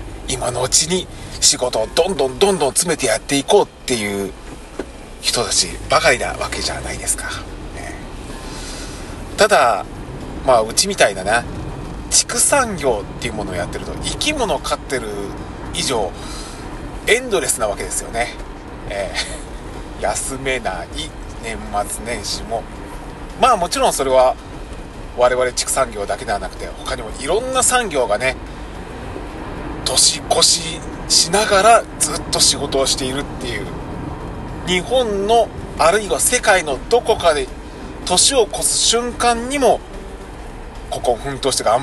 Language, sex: Japanese, male